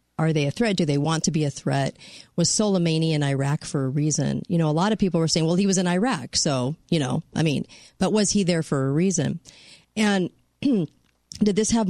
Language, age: English, 40-59